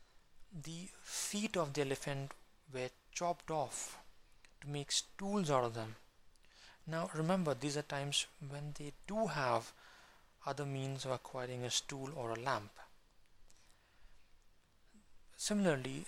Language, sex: English, male